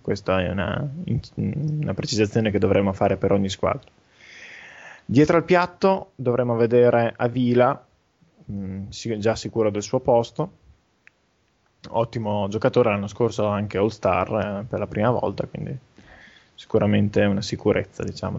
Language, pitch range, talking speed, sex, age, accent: Italian, 105-125 Hz, 130 wpm, male, 20-39, native